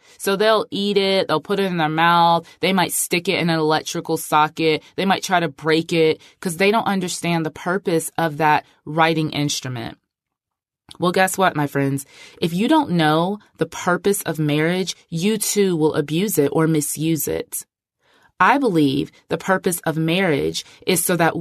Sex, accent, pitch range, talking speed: female, American, 155-190 Hz, 180 wpm